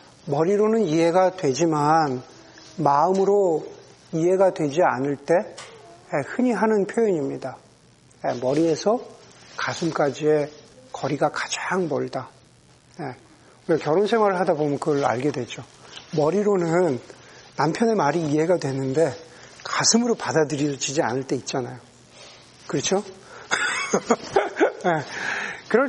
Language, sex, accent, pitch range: Korean, male, native, 150-200 Hz